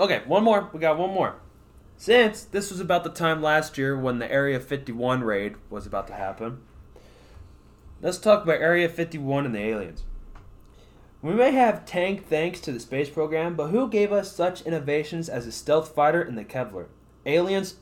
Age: 20-39